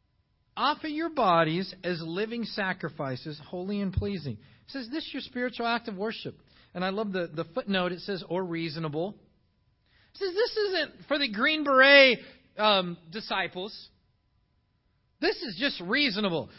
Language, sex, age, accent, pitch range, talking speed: English, male, 40-59, American, 175-290 Hz, 155 wpm